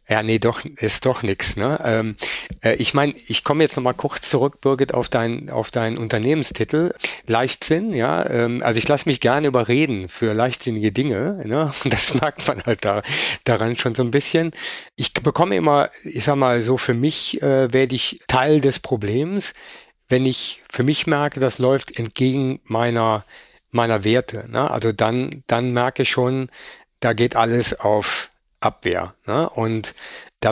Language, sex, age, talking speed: German, male, 50-69, 175 wpm